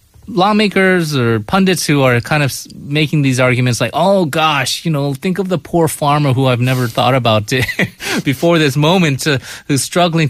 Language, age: English, 30-49